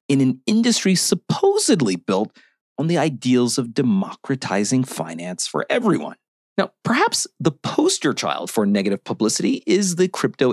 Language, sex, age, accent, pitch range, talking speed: English, male, 40-59, American, 130-215 Hz, 135 wpm